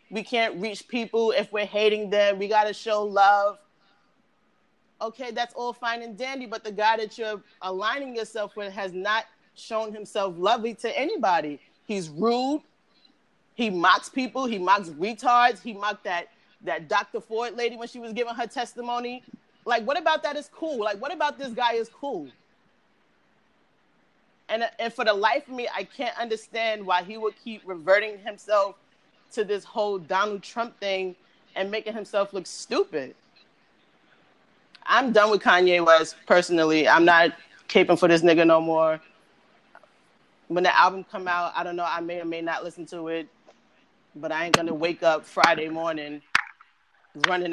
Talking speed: 170 wpm